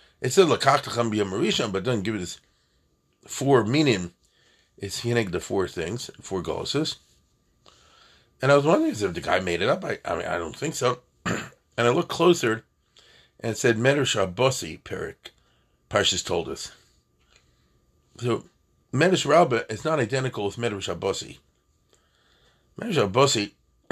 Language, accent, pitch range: English, American, 95-130 Hz